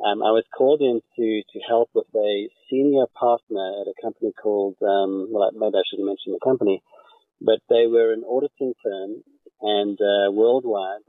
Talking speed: 185 wpm